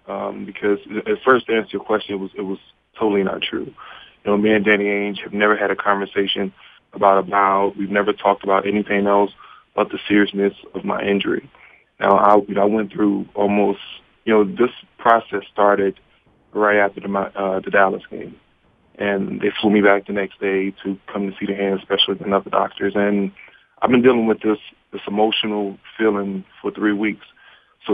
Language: English